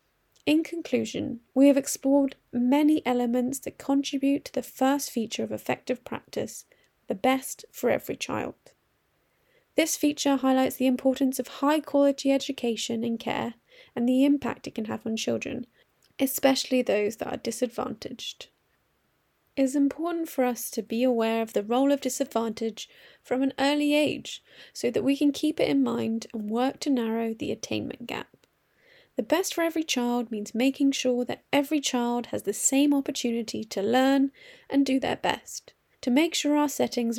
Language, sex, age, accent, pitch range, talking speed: English, female, 30-49, British, 240-285 Hz, 165 wpm